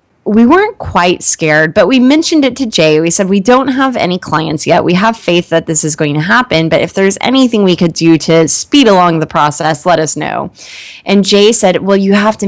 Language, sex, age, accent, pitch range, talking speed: English, female, 20-39, American, 160-210 Hz, 235 wpm